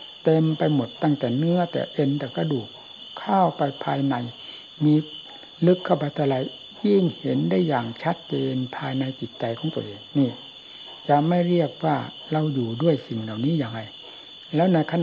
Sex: male